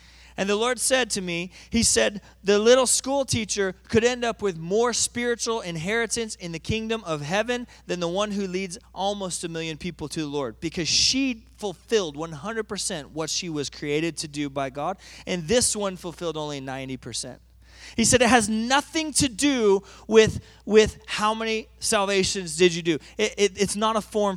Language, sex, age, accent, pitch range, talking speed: English, male, 30-49, American, 185-250 Hz, 185 wpm